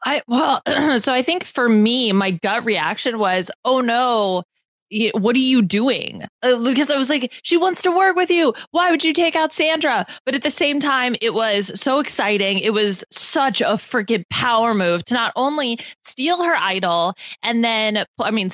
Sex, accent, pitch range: female, American, 205-280 Hz